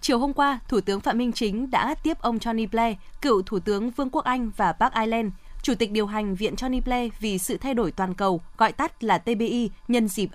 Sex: female